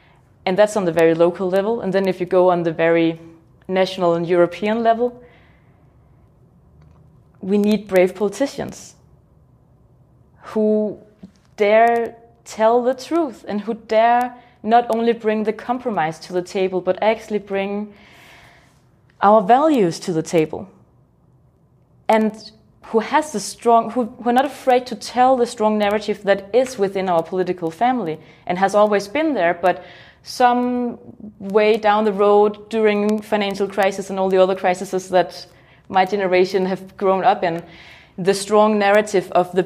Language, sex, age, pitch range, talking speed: English, female, 20-39, 180-220 Hz, 150 wpm